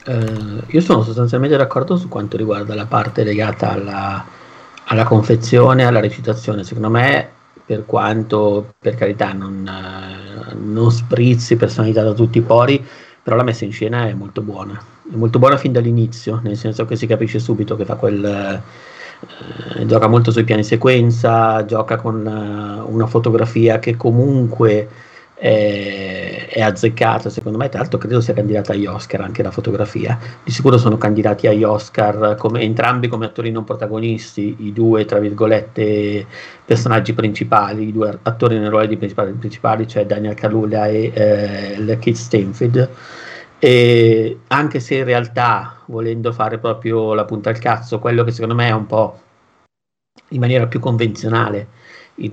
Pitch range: 105-120 Hz